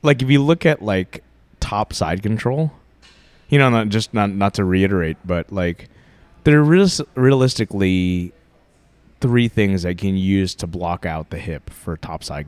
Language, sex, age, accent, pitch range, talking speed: English, male, 20-39, American, 90-110 Hz, 180 wpm